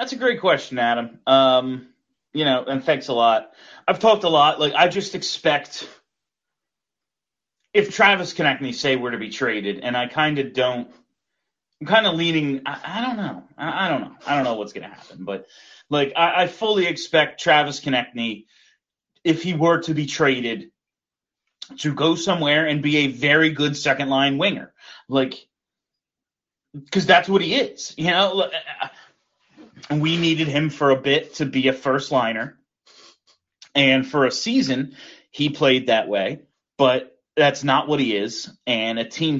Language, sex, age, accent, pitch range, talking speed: English, male, 30-49, American, 130-165 Hz, 170 wpm